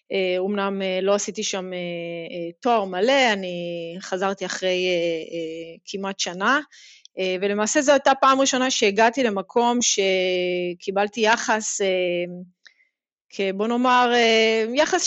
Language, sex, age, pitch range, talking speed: Hebrew, female, 30-49, 190-240 Hz, 90 wpm